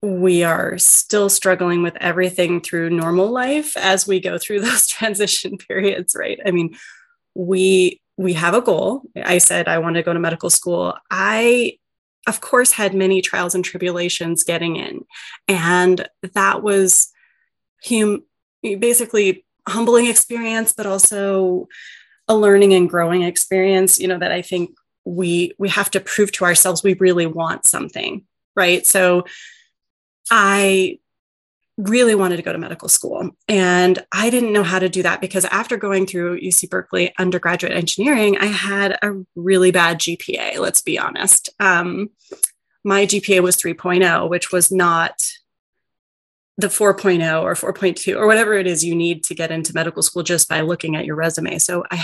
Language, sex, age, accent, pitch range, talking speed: English, female, 30-49, American, 175-200 Hz, 160 wpm